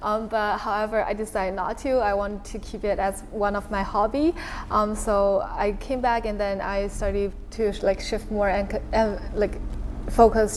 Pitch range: 195-220 Hz